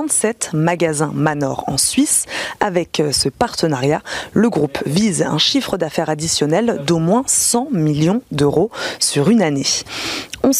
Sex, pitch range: female, 155-210 Hz